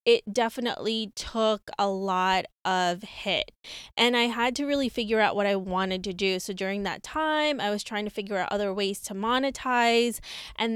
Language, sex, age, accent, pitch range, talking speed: English, female, 20-39, American, 200-240 Hz, 190 wpm